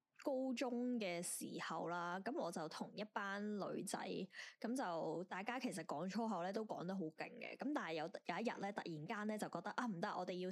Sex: female